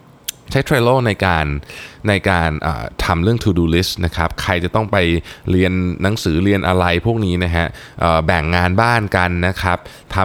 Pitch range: 85-110 Hz